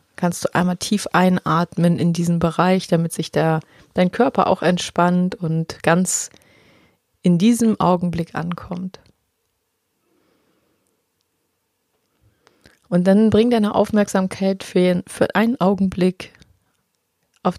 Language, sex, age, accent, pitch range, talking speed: German, female, 30-49, German, 155-190 Hz, 105 wpm